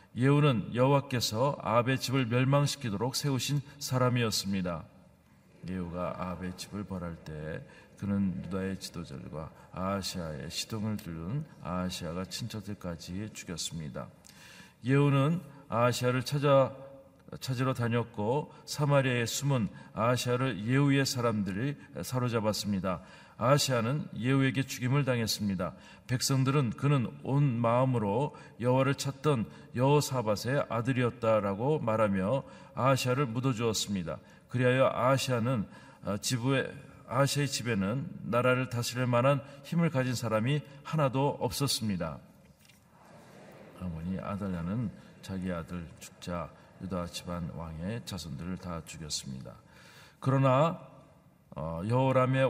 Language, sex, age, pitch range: Korean, male, 40-59, 100-135 Hz